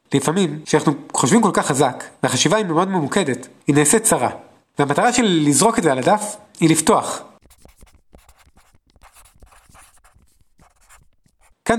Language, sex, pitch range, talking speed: Hebrew, male, 130-195 Hz, 115 wpm